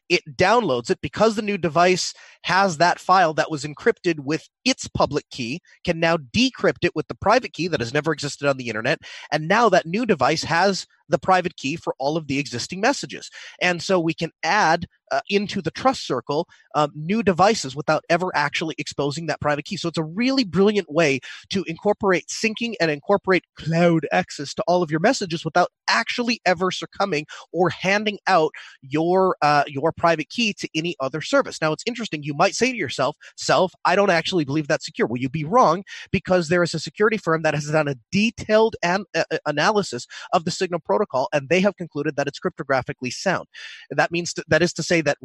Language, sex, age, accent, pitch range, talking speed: English, male, 30-49, American, 150-195 Hz, 205 wpm